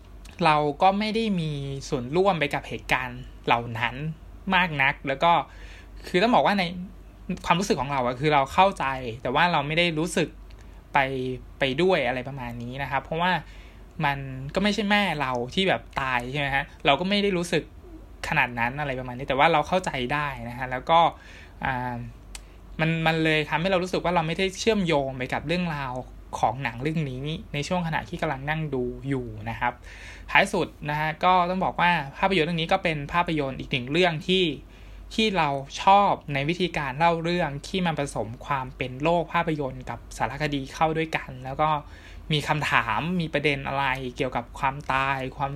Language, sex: Thai, male